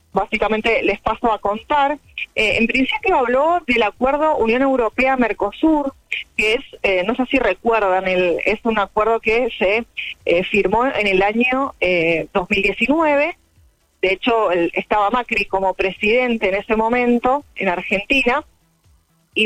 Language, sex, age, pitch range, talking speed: Spanish, female, 20-39, 195-250 Hz, 140 wpm